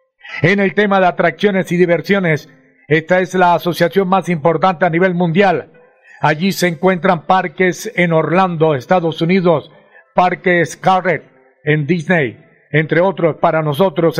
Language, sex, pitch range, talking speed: Spanish, male, 165-190 Hz, 135 wpm